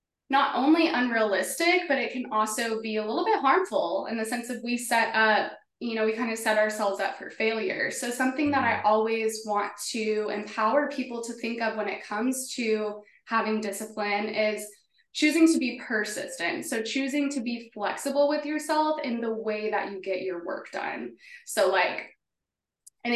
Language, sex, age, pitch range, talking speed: English, female, 20-39, 215-260 Hz, 185 wpm